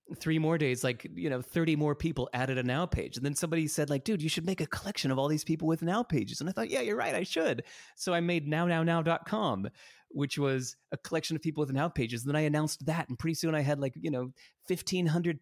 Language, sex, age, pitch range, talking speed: English, male, 30-49, 120-155 Hz, 255 wpm